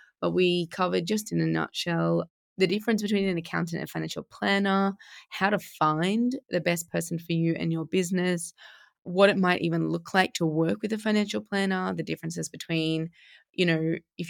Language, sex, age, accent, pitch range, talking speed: English, female, 20-39, Australian, 165-200 Hz, 190 wpm